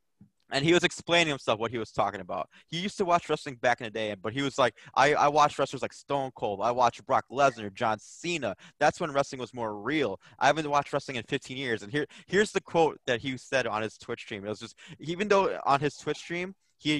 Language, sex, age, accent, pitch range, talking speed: English, male, 20-39, American, 130-175 Hz, 250 wpm